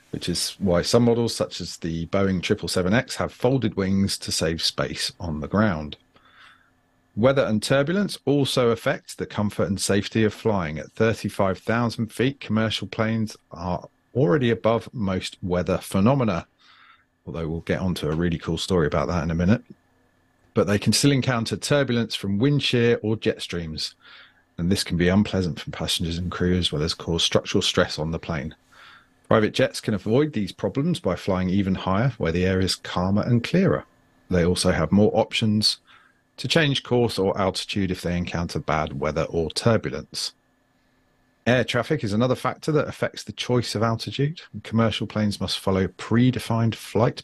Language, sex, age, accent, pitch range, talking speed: English, male, 40-59, British, 90-115 Hz, 170 wpm